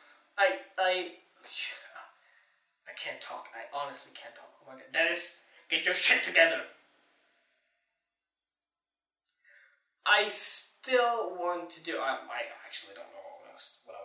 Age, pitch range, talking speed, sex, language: 20-39, 130-180 Hz, 140 wpm, male, English